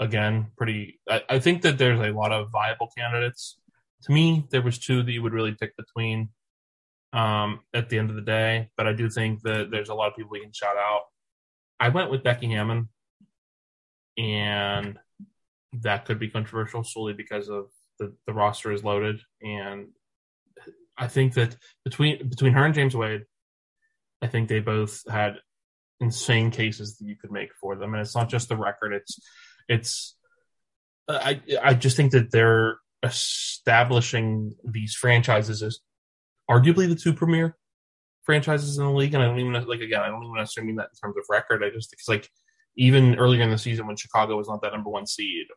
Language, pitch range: English, 105-130 Hz